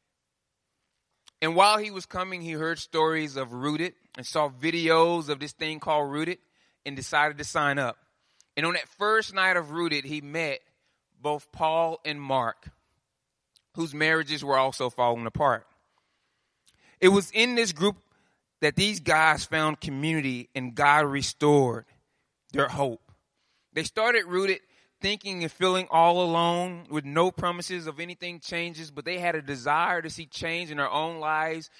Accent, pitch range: American, 140-175 Hz